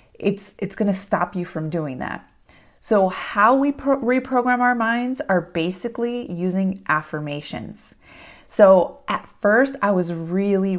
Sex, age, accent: female, 30-49, American